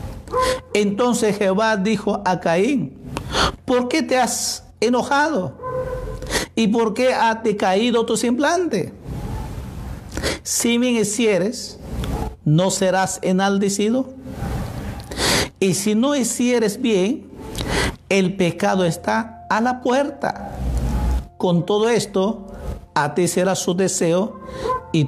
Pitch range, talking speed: 165-235 Hz, 105 wpm